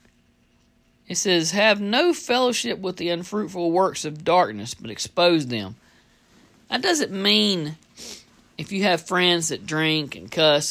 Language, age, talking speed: English, 50-69, 135 wpm